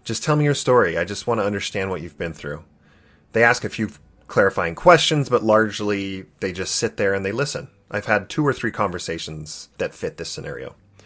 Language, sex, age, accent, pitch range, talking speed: English, male, 30-49, American, 80-110 Hz, 210 wpm